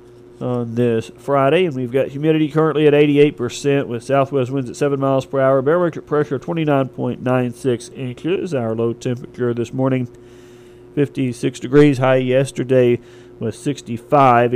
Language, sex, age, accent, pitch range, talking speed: English, male, 40-59, American, 120-145 Hz, 140 wpm